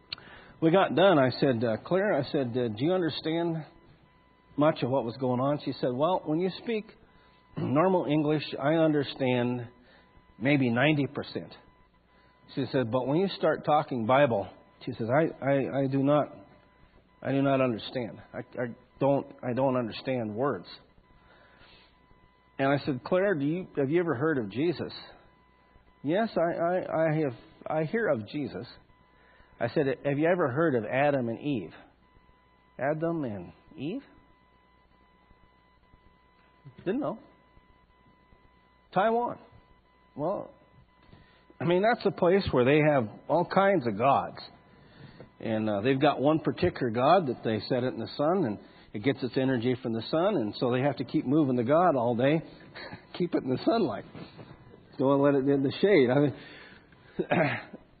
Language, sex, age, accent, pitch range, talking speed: English, male, 50-69, American, 125-155 Hz, 160 wpm